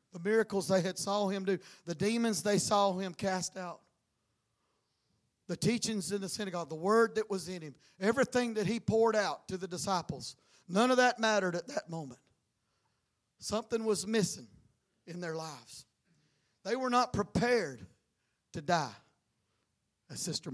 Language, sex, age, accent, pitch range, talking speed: English, male, 40-59, American, 190-290 Hz, 160 wpm